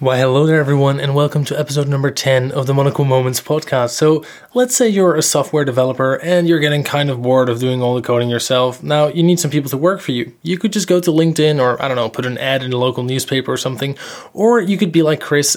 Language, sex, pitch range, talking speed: English, male, 130-160 Hz, 260 wpm